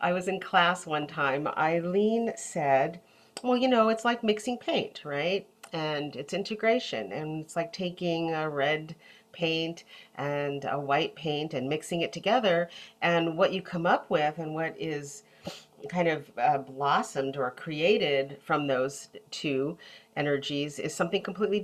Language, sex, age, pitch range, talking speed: English, female, 40-59, 145-180 Hz, 155 wpm